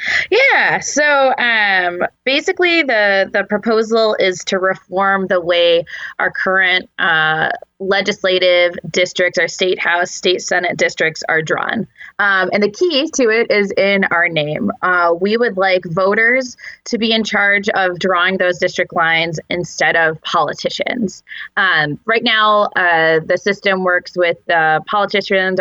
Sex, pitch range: female, 175-215 Hz